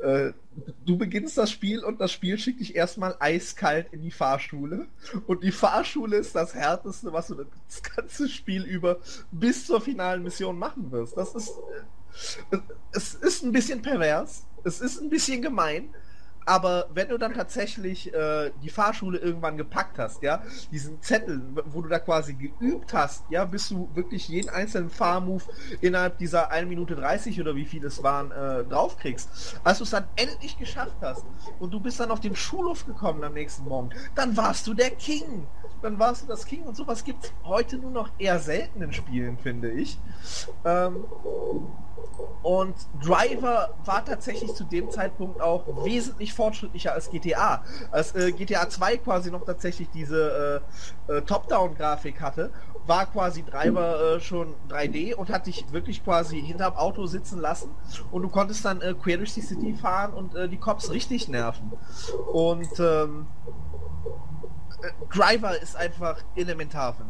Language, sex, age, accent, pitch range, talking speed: German, male, 20-39, German, 160-220 Hz, 170 wpm